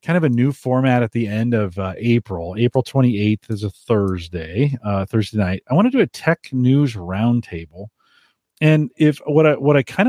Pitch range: 105-140 Hz